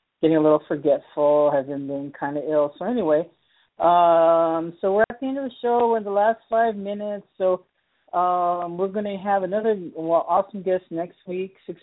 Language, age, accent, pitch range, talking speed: English, 50-69, American, 150-185 Hz, 190 wpm